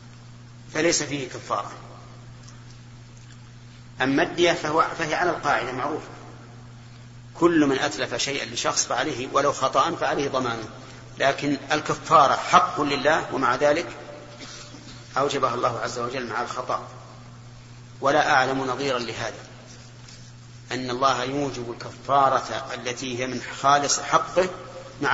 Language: Arabic